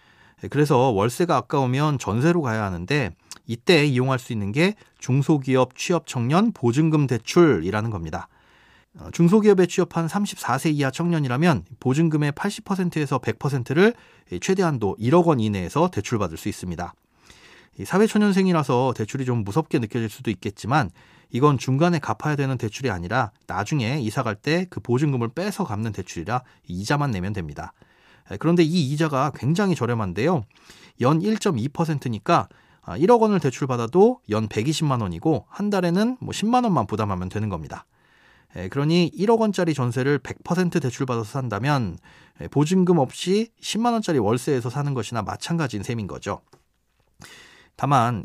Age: 30-49